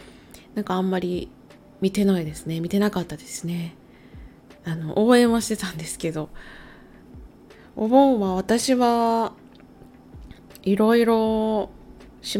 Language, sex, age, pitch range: Japanese, female, 20-39, 180-240 Hz